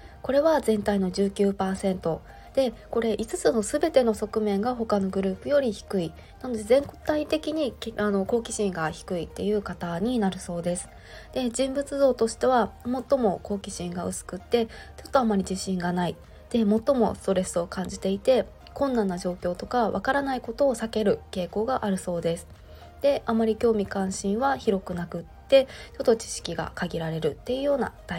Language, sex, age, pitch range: Japanese, female, 20-39, 190-235 Hz